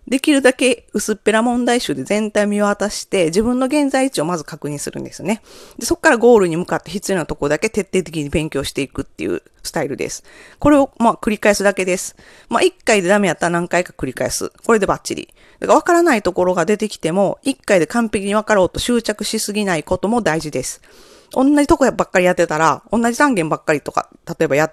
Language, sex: Japanese, female